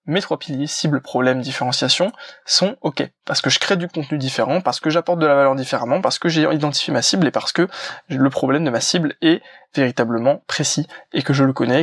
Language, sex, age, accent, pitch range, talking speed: French, male, 20-39, French, 140-170 Hz, 225 wpm